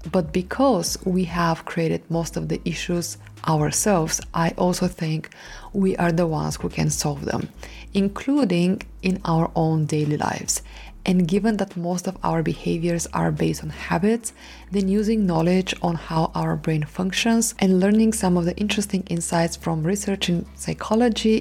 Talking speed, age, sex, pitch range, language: 160 wpm, 20-39, female, 160-190 Hz, English